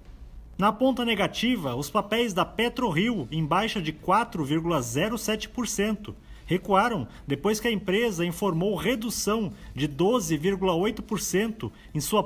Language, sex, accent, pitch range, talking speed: Portuguese, male, Brazilian, 170-230 Hz, 110 wpm